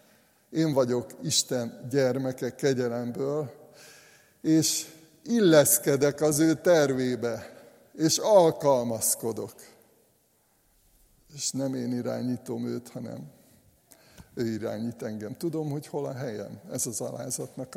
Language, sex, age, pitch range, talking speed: Hungarian, male, 60-79, 120-140 Hz, 100 wpm